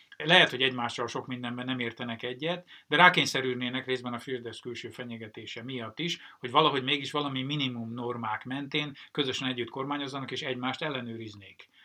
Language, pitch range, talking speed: Hungarian, 120-145 Hz, 150 wpm